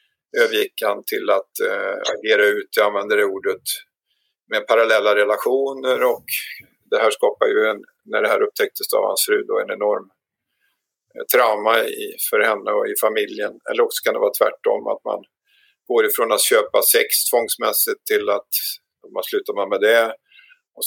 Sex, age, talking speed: male, 50-69, 170 wpm